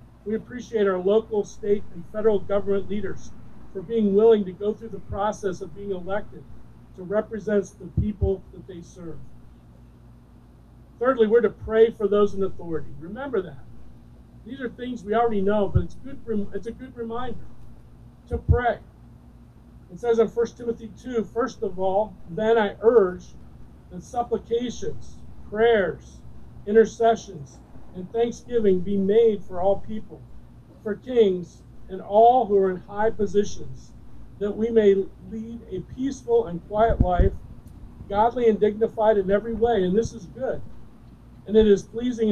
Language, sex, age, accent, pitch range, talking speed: English, male, 50-69, American, 180-225 Hz, 150 wpm